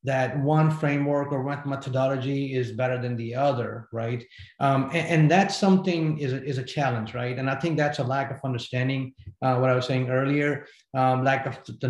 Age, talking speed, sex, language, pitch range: 30-49, 205 wpm, male, English, 125-150 Hz